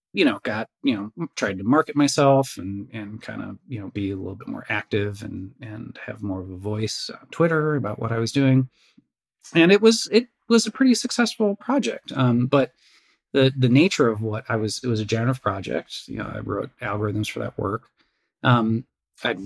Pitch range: 105-135 Hz